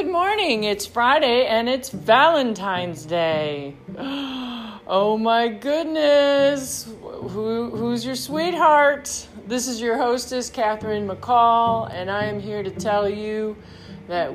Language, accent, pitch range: English, American, 180-240 Hz